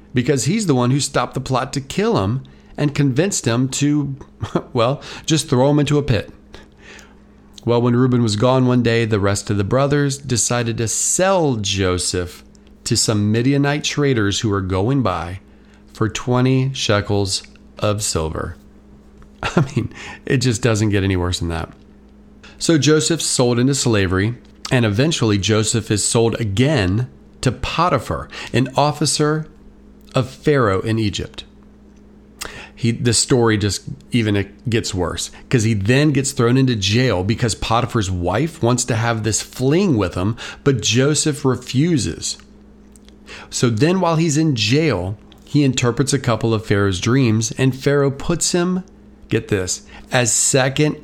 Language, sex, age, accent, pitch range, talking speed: English, male, 40-59, American, 105-140 Hz, 150 wpm